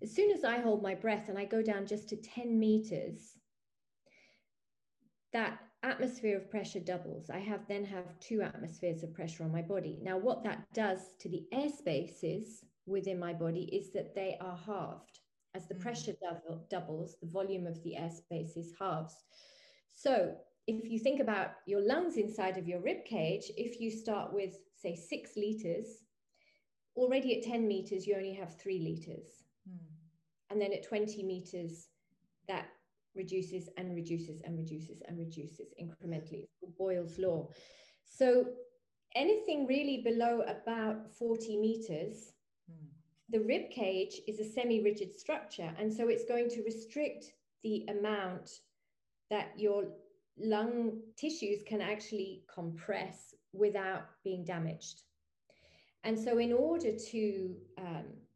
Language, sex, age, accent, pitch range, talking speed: English, female, 30-49, British, 175-225 Hz, 145 wpm